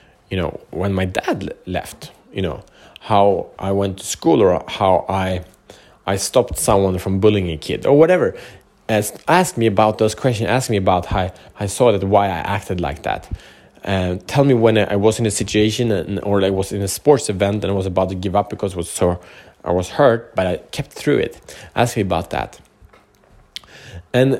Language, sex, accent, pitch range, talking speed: Swedish, male, Norwegian, 95-120 Hz, 210 wpm